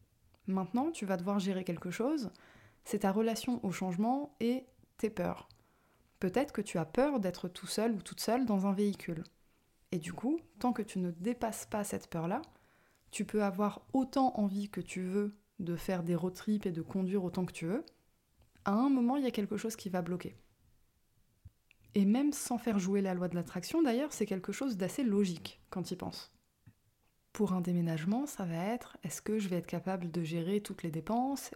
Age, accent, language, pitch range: 20-39, French, French, 180-230 Hz